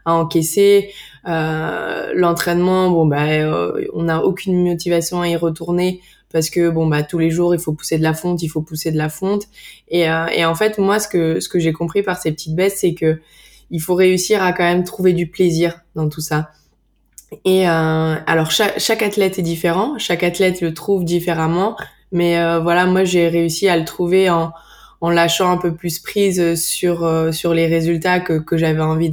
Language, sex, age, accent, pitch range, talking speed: French, female, 20-39, French, 165-185 Hz, 210 wpm